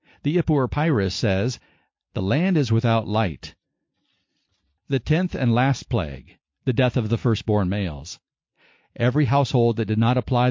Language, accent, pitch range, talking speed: English, American, 110-140 Hz, 150 wpm